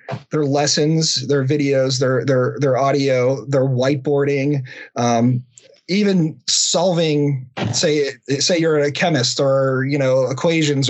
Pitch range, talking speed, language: 130-150 Hz, 120 wpm, English